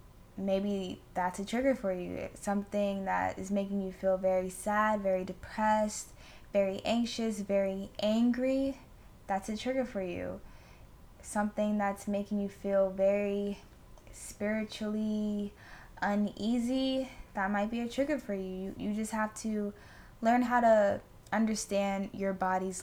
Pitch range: 195-220 Hz